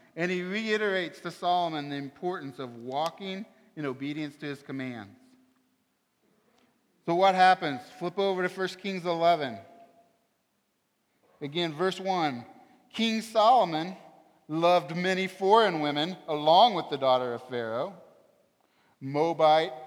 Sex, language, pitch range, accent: male, English, 135-185 Hz, American